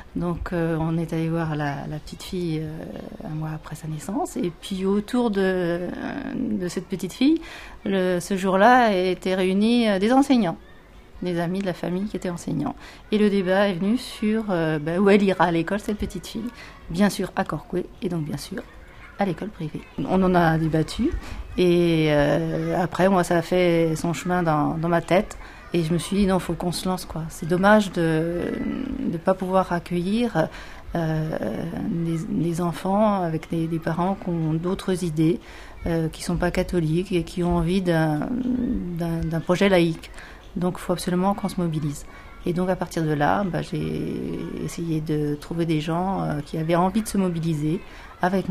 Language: French